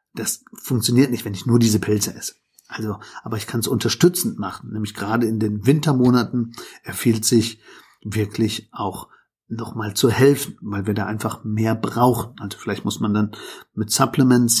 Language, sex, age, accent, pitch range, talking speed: German, male, 50-69, German, 105-120 Hz, 175 wpm